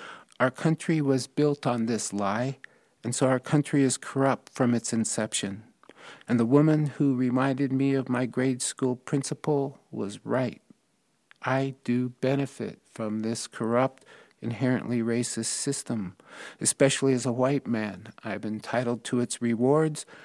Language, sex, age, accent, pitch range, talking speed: English, male, 50-69, American, 120-140 Hz, 145 wpm